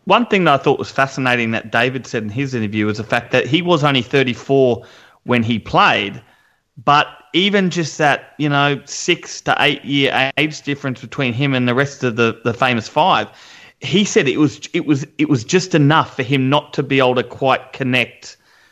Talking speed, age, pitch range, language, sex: 210 wpm, 30-49, 120-150 Hz, English, male